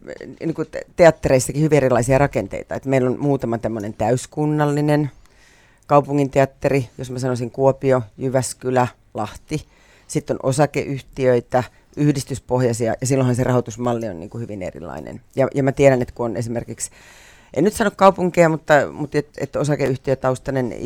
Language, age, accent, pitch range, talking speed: Finnish, 40-59, native, 120-140 Hz, 140 wpm